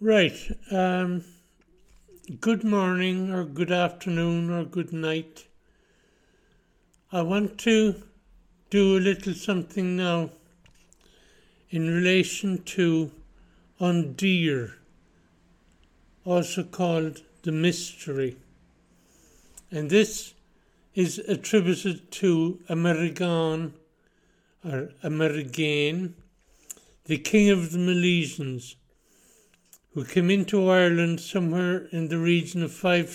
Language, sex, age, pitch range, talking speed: English, male, 60-79, 160-185 Hz, 90 wpm